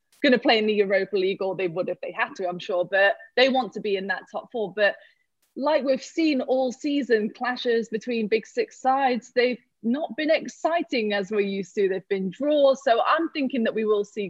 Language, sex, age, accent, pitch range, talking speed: English, female, 20-39, British, 200-240 Hz, 225 wpm